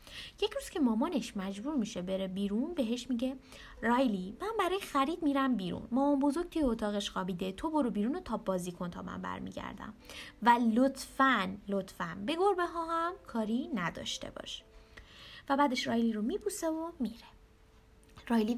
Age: 20-39